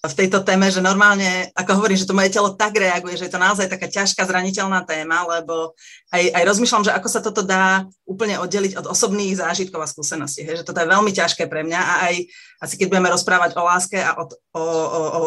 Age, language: 30-49, Slovak